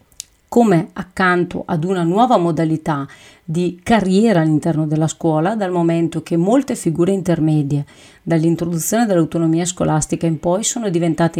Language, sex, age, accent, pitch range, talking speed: Italian, female, 40-59, native, 160-195 Hz, 125 wpm